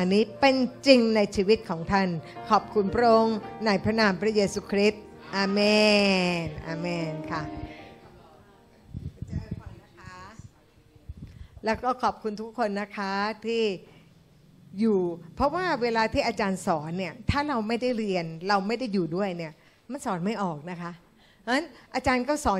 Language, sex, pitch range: Thai, female, 190-240 Hz